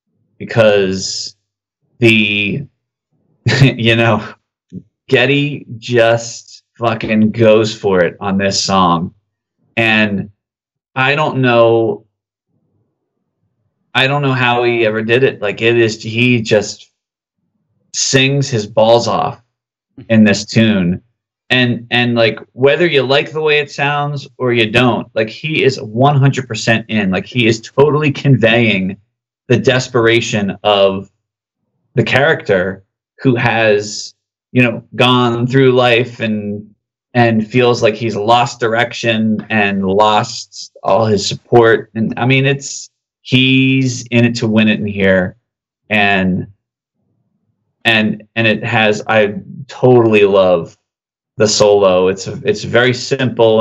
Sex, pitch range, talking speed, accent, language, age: male, 105-125 Hz, 125 wpm, American, English, 30-49